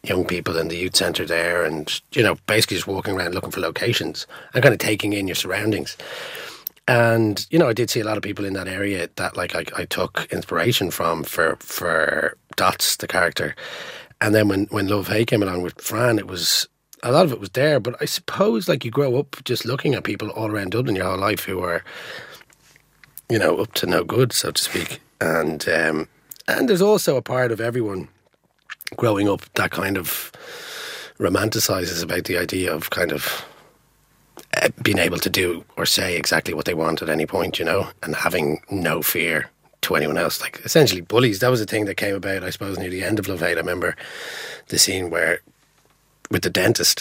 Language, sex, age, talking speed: English, male, 30-49, 210 wpm